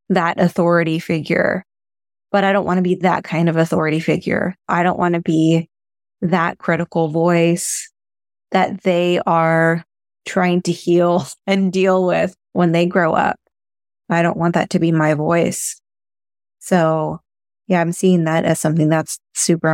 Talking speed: 160 wpm